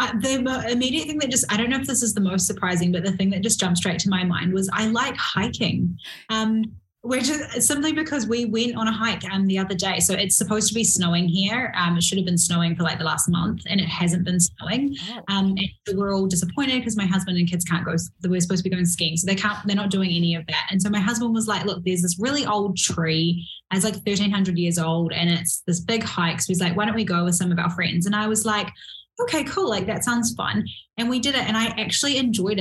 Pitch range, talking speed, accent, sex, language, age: 175-215 Hz, 265 wpm, Australian, female, English, 10-29